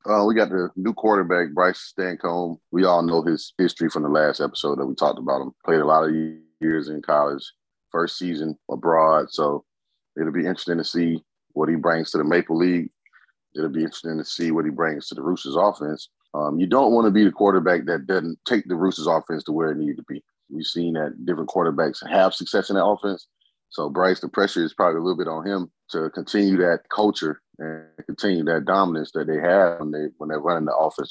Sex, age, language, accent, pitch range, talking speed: male, 30-49, English, American, 80-95 Hz, 225 wpm